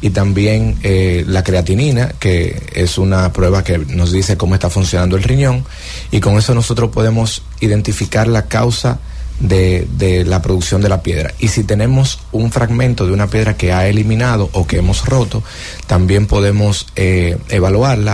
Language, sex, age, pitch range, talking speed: English, male, 30-49, 90-115 Hz, 170 wpm